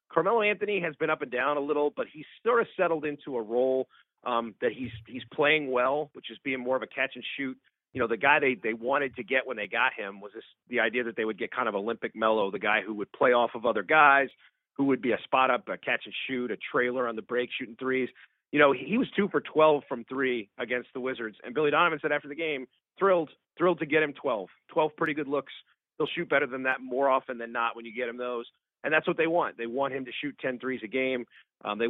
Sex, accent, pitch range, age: male, American, 120-145 Hz, 40-59